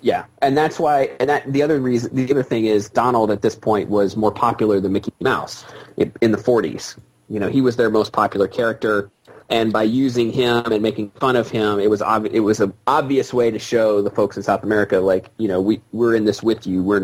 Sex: male